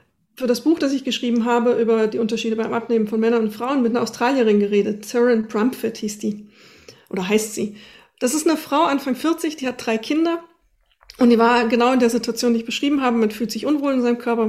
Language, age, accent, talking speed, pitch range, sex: German, 40-59, German, 230 wpm, 215-255 Hz, female